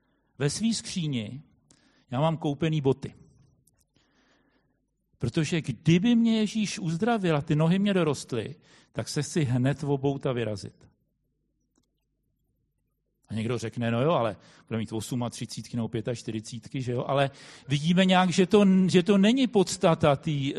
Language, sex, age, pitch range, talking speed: Czech, male, 50-69, 130-170 Hz, 145 wpm